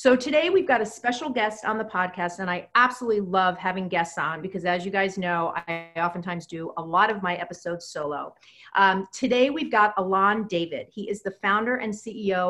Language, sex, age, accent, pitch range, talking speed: English, female, 40-59, American, 175-225 Hz, 205 wpm